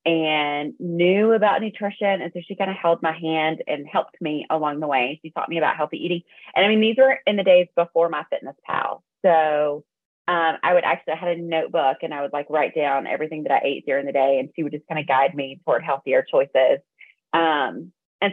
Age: 30-49